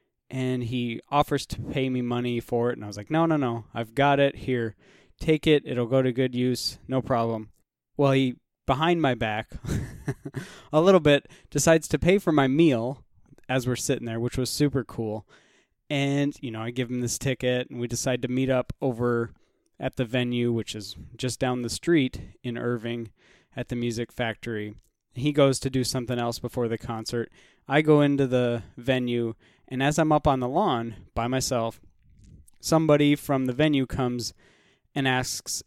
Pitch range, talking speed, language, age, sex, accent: 115-140 Hz, 185 wpm, English, 20-39, male, American